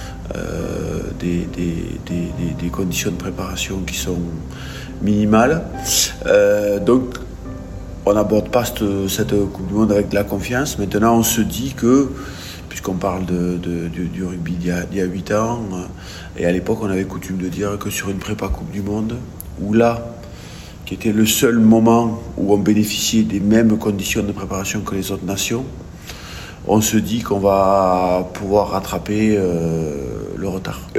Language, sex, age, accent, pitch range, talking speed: French, male, 50-69, French, 90-105 Hz, 170 wpm